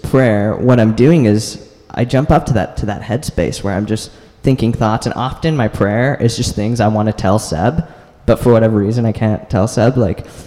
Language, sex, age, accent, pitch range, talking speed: English, male, 20-39, American, 100-125 Hz, 225 wpm